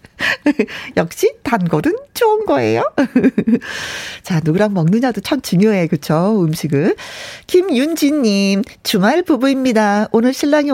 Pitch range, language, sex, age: 185-280 Hz, Korean, female, 40-59